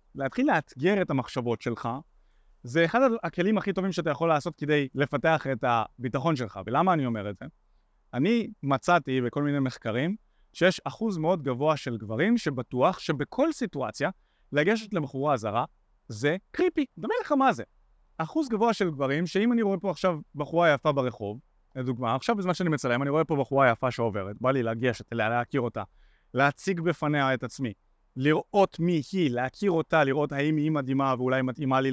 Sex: male